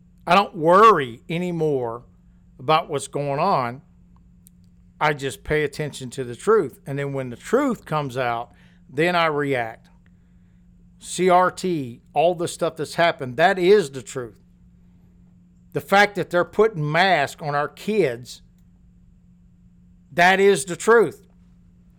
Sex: male